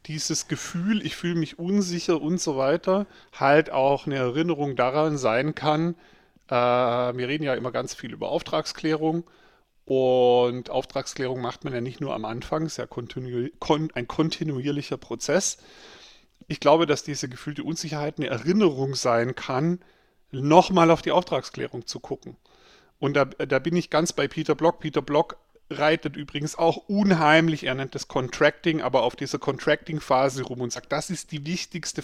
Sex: male